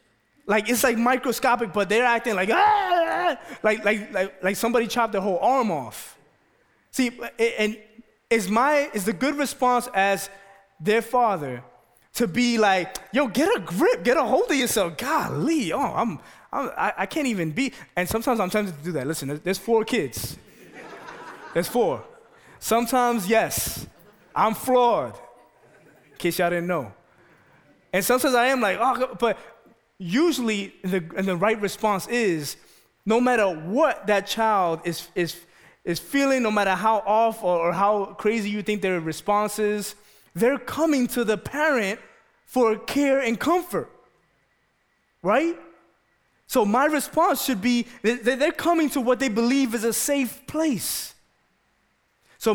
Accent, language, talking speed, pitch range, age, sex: American, English, 150 wpm, 195-255 Hz, 20-39, male